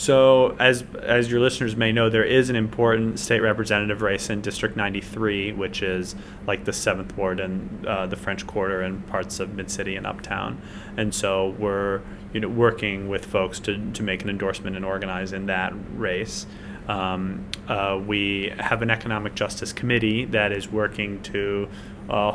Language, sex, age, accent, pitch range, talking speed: English, male, 30-49, American, 100-110 Hz, 175 wpm